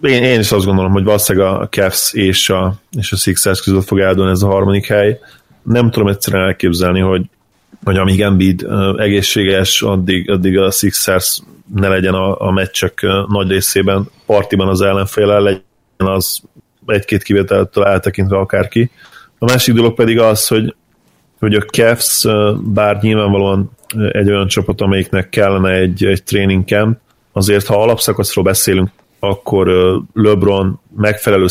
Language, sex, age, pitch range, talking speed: Hungarian, male, 30-49, 95-105 Hz, 145 wpm